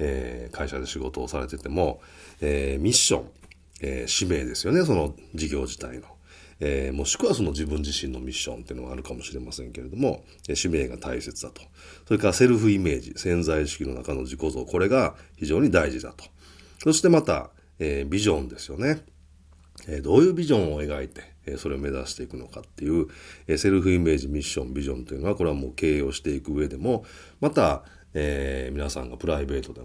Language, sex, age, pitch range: Japanese, male, 40-59, 70-90 Hz